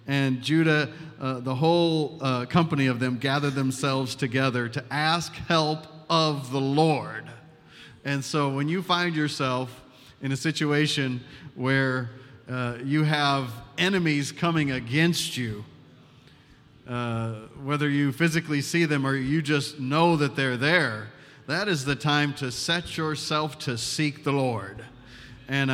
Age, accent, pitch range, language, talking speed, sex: 40-59, American, 130-155 Hz, English, 140 wpm, male